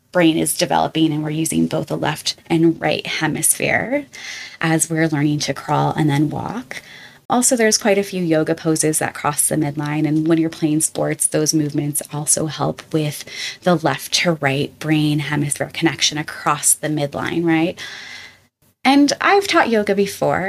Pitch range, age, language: 155-200 Hz, 20-39, English